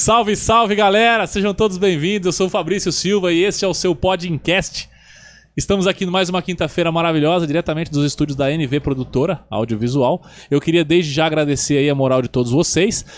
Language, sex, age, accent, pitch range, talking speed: Portuguese, male, 20-39, Brazilian, 140-185 Hz, 185 wpm